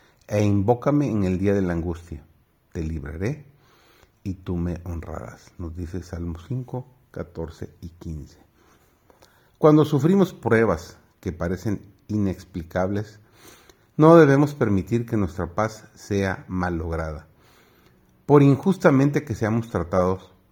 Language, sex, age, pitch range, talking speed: Spanish, male, 50-69, 90-125 Hz, 115 wpm